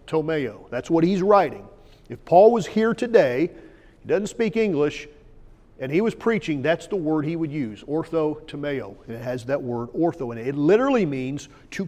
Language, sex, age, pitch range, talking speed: English, male, 40-59, 125-150 Hz, 190 wpm